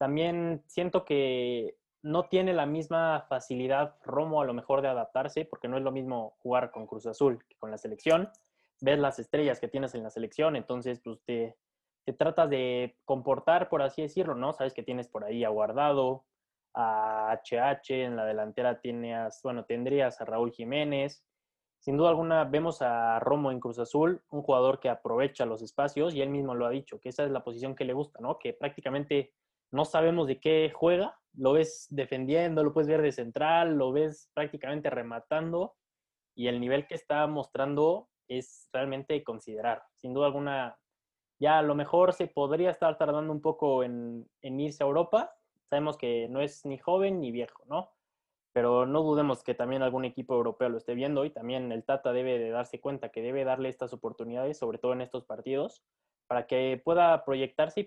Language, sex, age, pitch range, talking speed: Spanish, male, 20-39, 125-155 Hz, 190 wpm